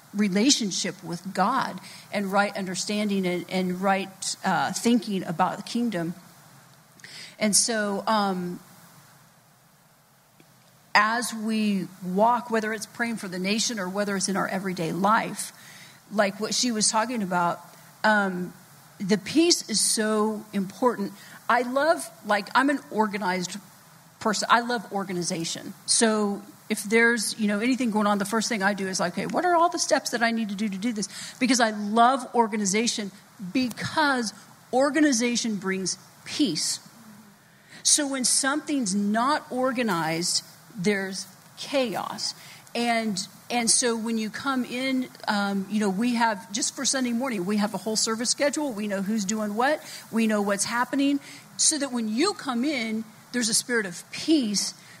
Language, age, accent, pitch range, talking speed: English, 40-59, American, 185-235 Hz, 155 wpm